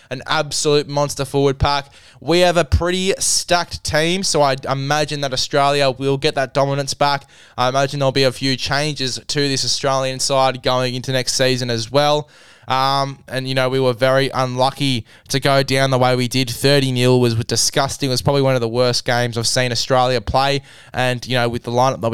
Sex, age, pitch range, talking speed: male, 10-29, 125-140 Hz, 205 wpm